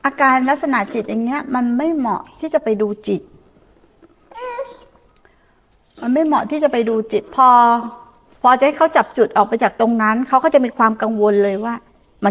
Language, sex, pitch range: Thai, female, 210-260 Hz